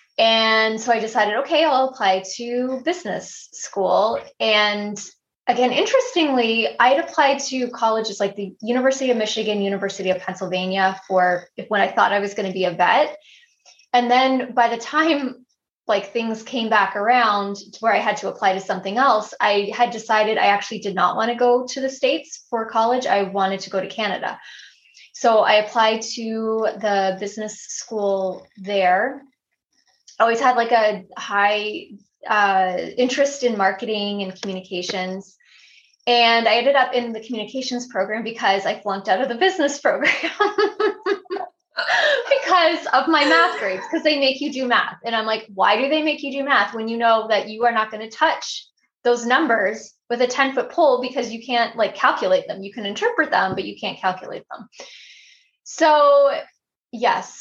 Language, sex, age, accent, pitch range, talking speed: English, female, 20-39, American, 205-270 Hz, 175 wpm